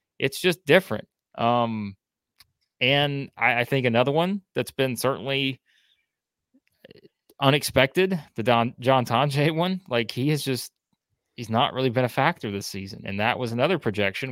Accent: American